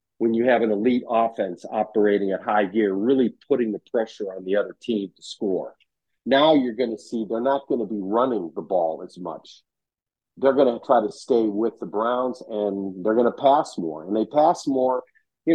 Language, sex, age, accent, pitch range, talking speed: English, male, 50-69, American, 100-125 Hz, 210 wpm